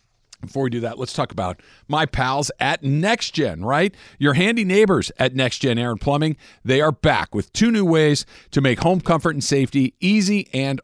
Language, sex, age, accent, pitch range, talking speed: English, male, 50-69, American, 115-160 Hz, 195 wpm